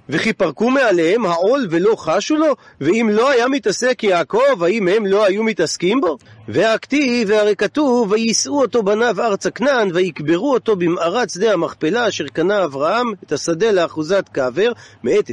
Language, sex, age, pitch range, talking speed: Hebrew, male, 40-59, 175-255 Hz, 150 wpm